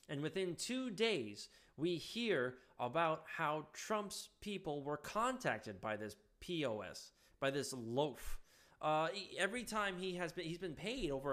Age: 20-39